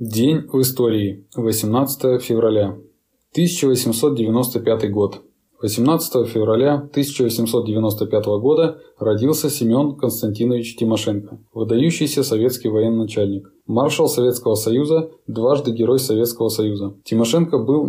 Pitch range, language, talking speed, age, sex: 110-140 Hz, Russian, 90 wpm, 20-39, male